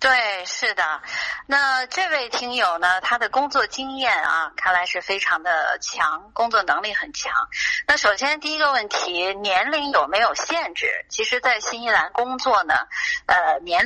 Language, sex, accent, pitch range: Chinese, female, native, 185-275 Hz